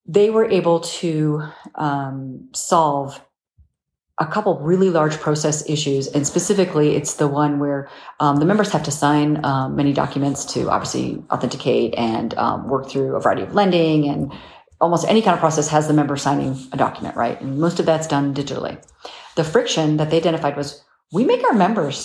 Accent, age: American, 40-59